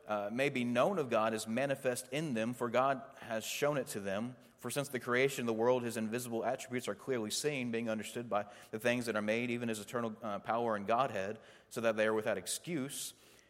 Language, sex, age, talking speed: English, male, 30-49, 225 wpm